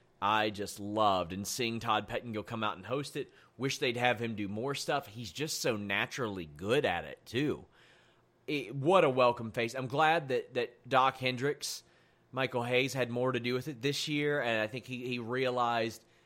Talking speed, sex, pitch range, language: 195 wpm, male, 110-145 Hz, English